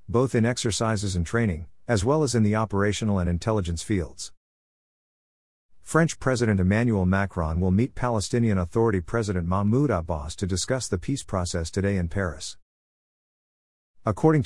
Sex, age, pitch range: male, 50-69, 90-110 Hz